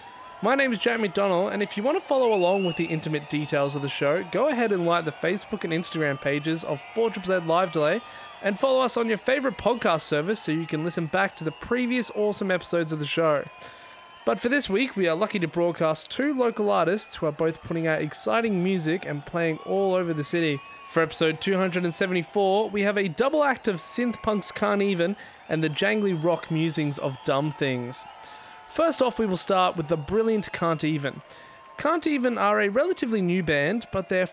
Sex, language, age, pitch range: male, English, 20-39, 160-215 Hz